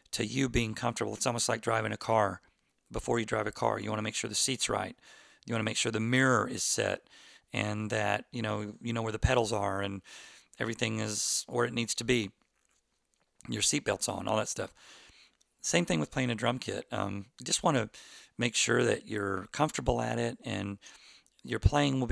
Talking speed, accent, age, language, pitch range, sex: 215 wpm, American, 40-59, English, 105-120 Hz, male